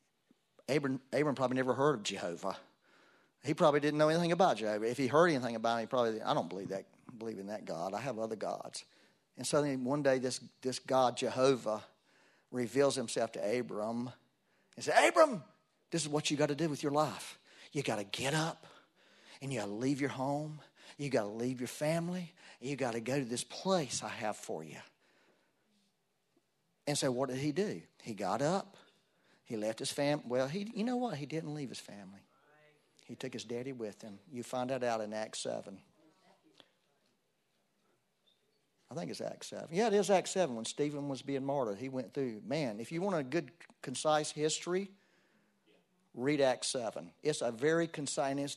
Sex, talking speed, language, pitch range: male, 195 wpm, English, 125-180 Hz